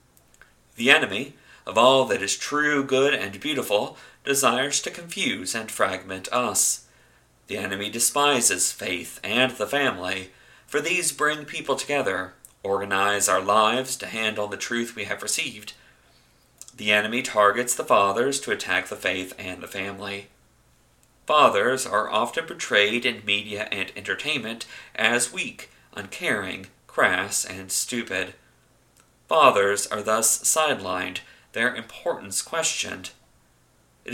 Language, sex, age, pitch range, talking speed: English, male, 40-59, 95-130 Hz, 125 wpm